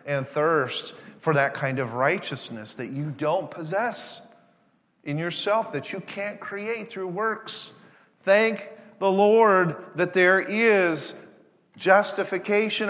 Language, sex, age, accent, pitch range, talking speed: English, male, 40-59, American, 125-185 Hz, 120 wpm